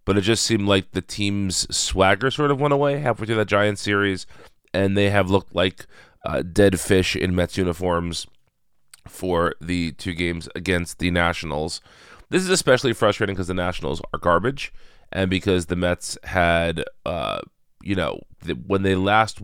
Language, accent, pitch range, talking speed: English, American, 85-100 Hz, 175 wpm